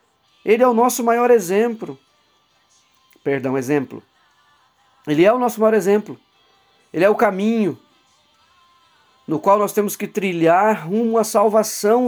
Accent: Brazilian